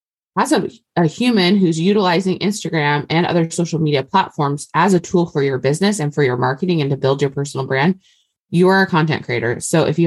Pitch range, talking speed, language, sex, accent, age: 145-185 Hz, 215 wpm, English, female, American, 20-39